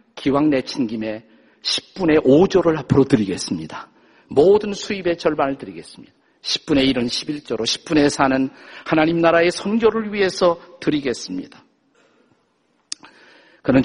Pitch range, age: 135-180 Hz, 50-69